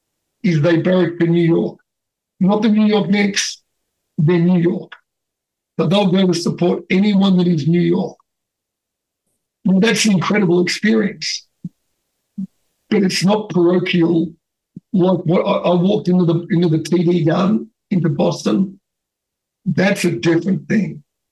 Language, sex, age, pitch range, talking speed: English, male, 60-79, 170-195 Hz, 140 wpm